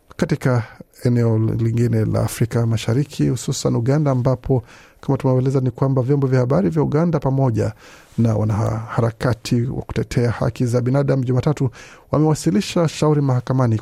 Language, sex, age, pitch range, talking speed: Swahili, male, 50-69, 115-140 Hz, 130 wpm